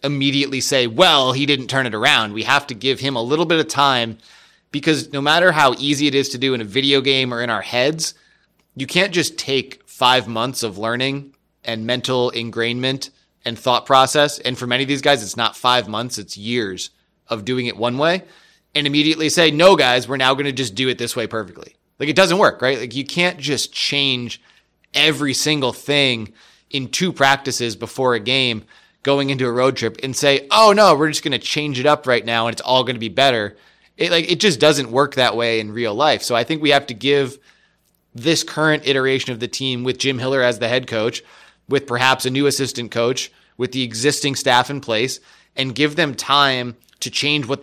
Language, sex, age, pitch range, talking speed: English, male, 20-39, 120-145 Hz, 220 wpm